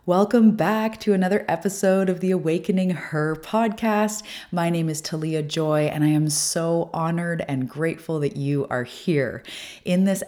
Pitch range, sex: 130-170 Hz, female